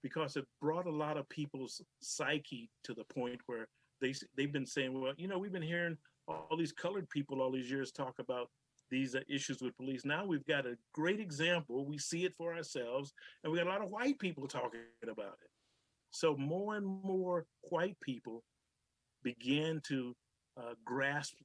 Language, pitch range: English, 130-160 Hz